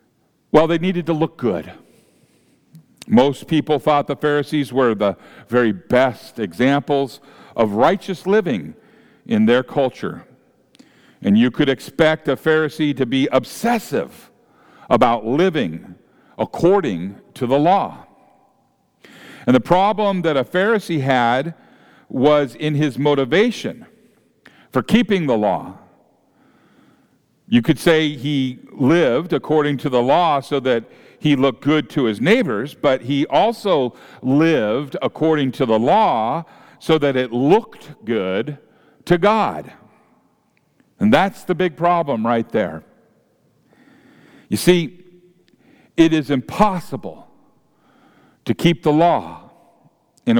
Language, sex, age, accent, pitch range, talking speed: English, male, 50-69, American, 135-180 Hz, 120 wpm